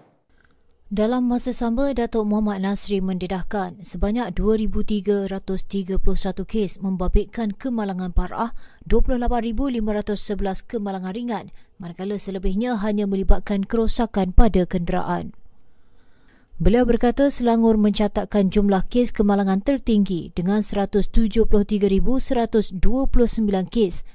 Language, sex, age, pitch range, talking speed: Malay, female, 30-49, 195-235 Hz, 85 wpm